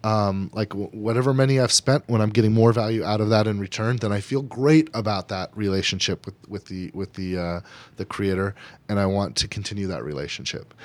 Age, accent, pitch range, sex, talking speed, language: 30-49, American, 105-130 Hz, male, 215 wpm, English